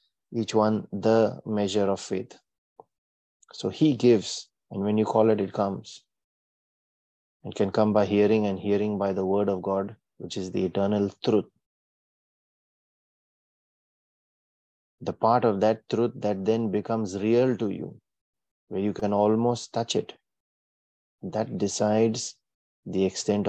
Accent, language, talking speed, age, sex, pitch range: Indian, English, 140 wpm, 30-49, male, 100-110 Hz